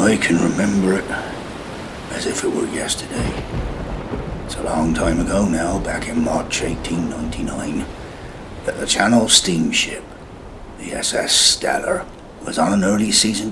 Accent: British